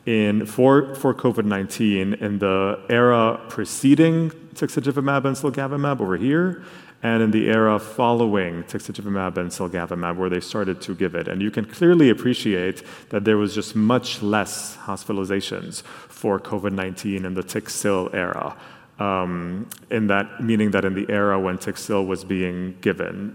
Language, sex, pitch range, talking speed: English, male, 95-115 Hz, 155 wpm